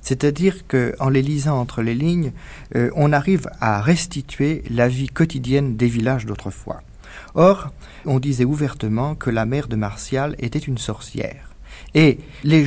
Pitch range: 120-160 Hz